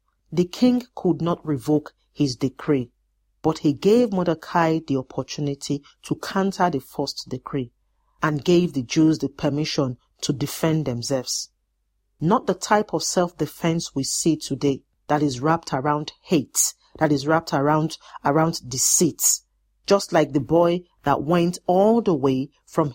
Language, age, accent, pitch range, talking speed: English, 40-59, Nigerian, 145-180 Hz, 145 wpm